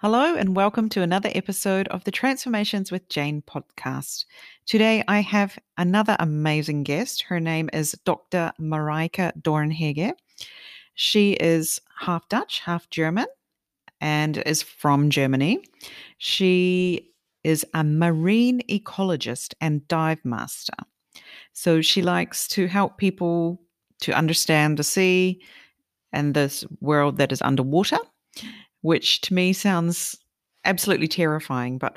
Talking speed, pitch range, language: 120 wpm, 150-200 Hz, English